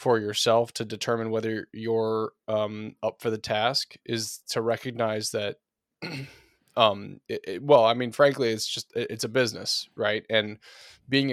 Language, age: English, 20-39